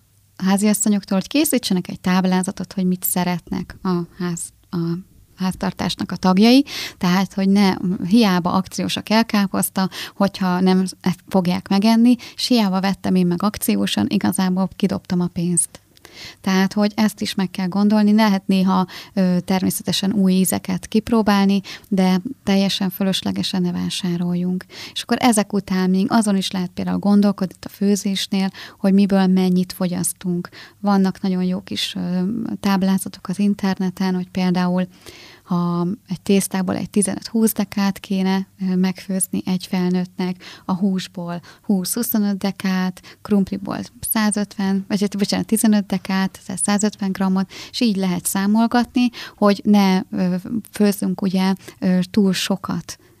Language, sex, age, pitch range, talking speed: Hungarian, female, 20-39, 185-205 Hz, 120 wpm